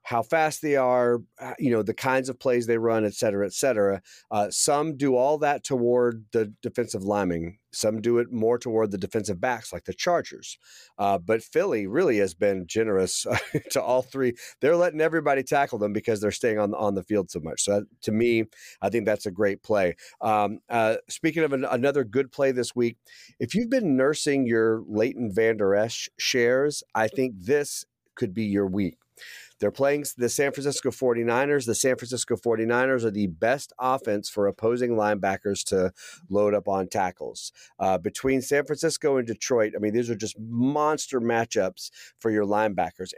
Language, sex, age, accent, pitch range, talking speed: English, male, 40-59, American, 105-125 Hz, 190 wpm